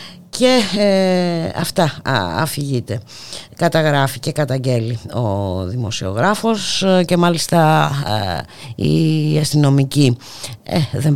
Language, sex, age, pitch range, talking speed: Greek, female, 50-69, 110-160 Hz, 85 wpm